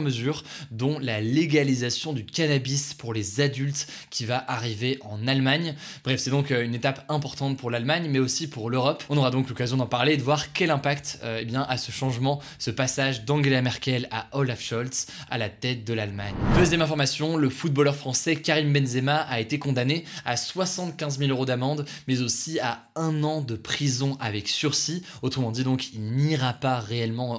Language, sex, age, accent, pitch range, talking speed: French, male, 20-39, French, 120-145 Hz, 185 wpm